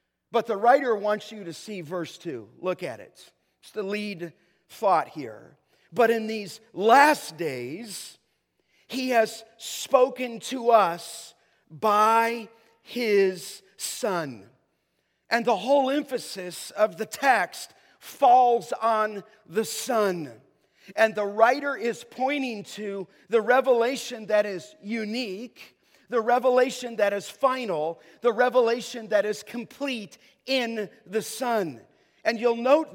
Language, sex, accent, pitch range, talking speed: English, male, American, 205-250 Hz, 125 wpm